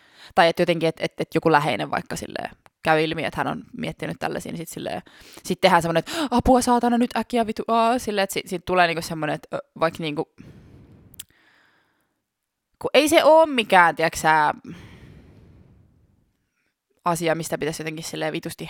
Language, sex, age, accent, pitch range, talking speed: Finnish, female, 20-39, native, 160-195 Hz, 155 wpm